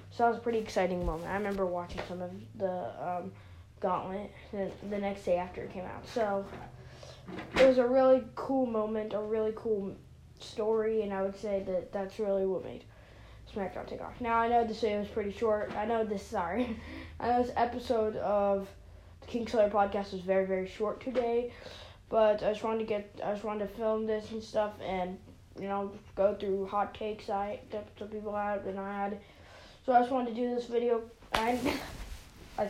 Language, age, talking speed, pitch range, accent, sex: English, 10-29, 205 wpm, 200-240 Hz, American, female